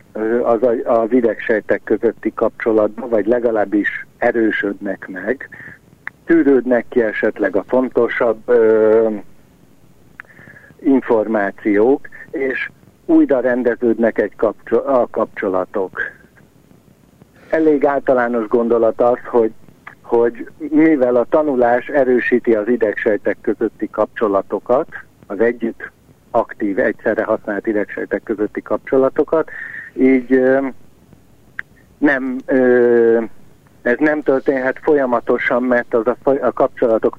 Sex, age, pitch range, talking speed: male, 60-79, 115-140 Hz, 90 wpm